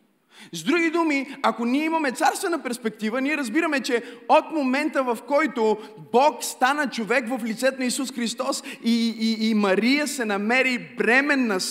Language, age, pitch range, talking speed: Bulgarian, 30-49, 180-240 Hz, 155 wpm